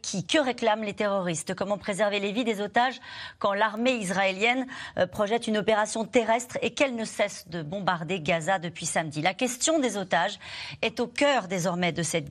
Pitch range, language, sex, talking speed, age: 175-225 Hz, French, female, 180 wpm, 40-59